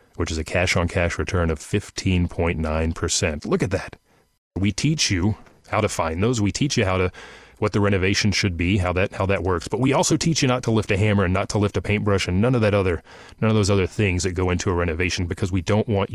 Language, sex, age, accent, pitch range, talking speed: English, male, 30-49, American, 85-105 Hz, 255 wpm